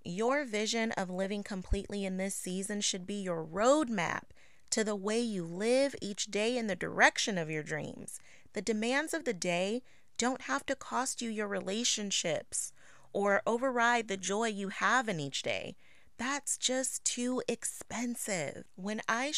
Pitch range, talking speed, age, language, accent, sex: 195-245 Hz, 160 wpm, 30-49, English, American, female